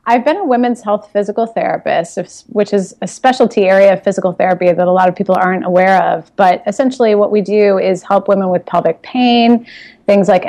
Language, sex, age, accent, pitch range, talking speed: English, female, 30-49, American, 185-220 Hz, 205 wpm